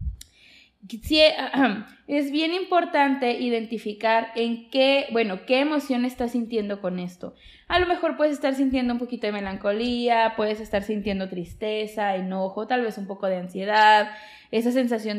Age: 20-39